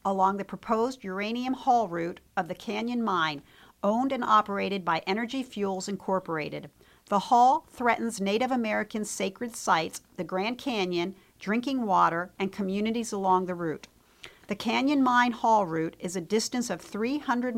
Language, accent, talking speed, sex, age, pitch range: English, American, 150 wpm, female, 50-69, 190-235 Hz